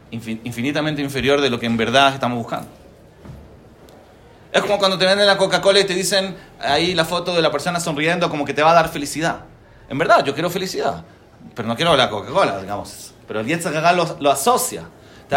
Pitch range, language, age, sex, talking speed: 125-175 Hz, English, 30-49, male, 205 wpm